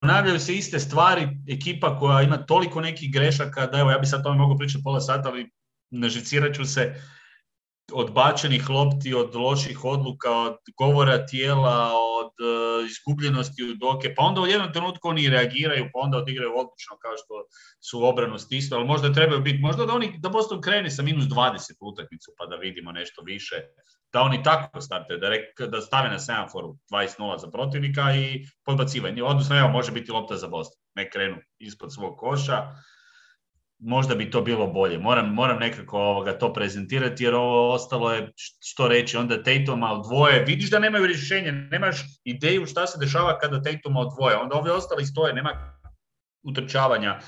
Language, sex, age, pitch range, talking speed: English, male, 30-49, 125-155 Hz, 175 wpm